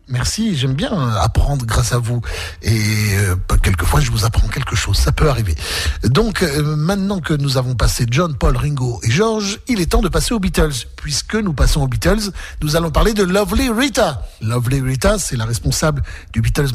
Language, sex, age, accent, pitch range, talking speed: French, male, 60-79, French, 115-175 Hz, 195 wpm